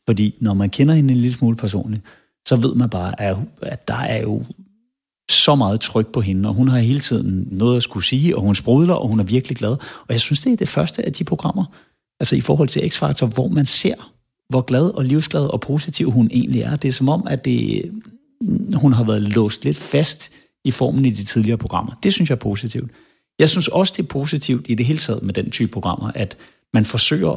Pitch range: 105-135 Hz